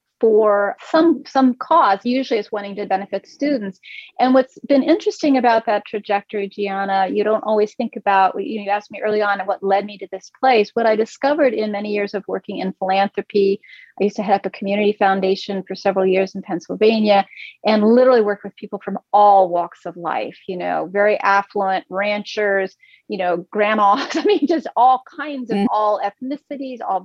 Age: 40-59